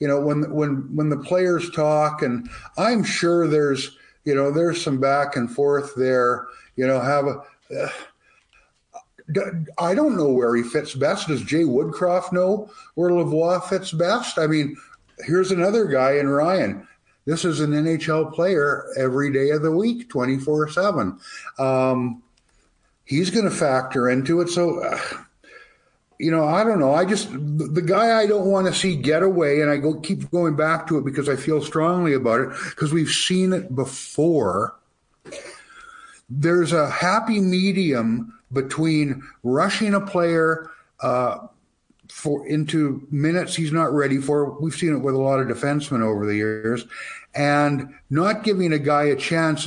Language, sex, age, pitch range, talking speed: English, male, 50-69, 135-175 Hz, 160 wpm